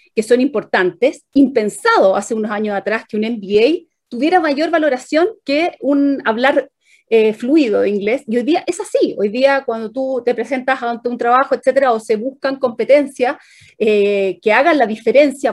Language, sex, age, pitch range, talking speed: Spanish, female, 30-49, 220-290 Hz, 175 wpm